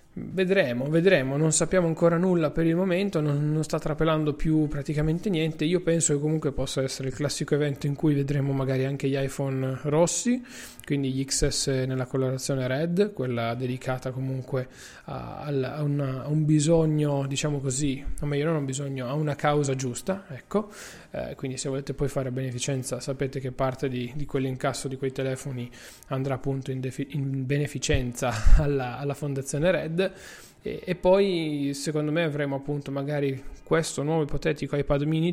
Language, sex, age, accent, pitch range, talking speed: Italian, male, 20-39, native, 135-155 Hz, 170 wpm